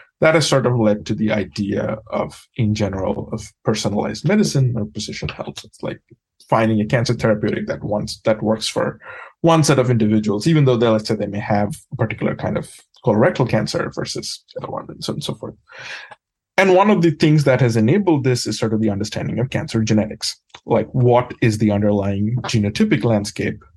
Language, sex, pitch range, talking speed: English, male, 110-140 Hz, 195 wpm